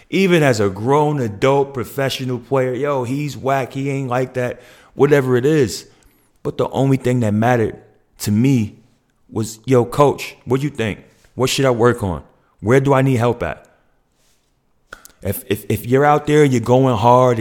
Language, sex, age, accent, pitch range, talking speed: English, male, 30-49, American, 115-140 Hz, 185 wpm